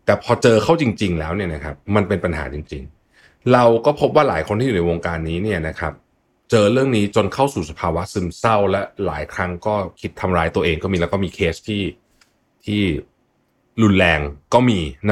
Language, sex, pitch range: Thai, male, 85-115 Hz